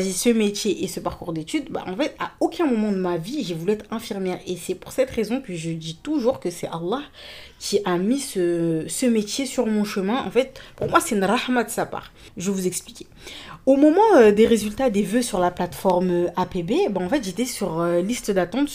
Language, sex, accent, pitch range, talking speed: French, female, French, 180-240 Hz, 225 wpm